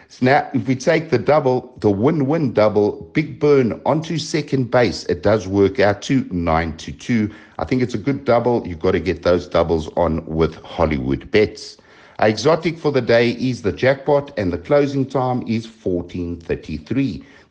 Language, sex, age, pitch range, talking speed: English, male, 60-79, 85-125 Hz, 180 wpm